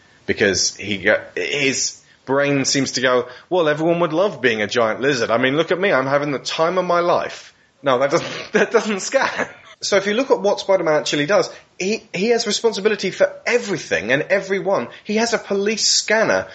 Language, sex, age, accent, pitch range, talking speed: English, male, 20-39, British, 115-190 Hz, 205 wpm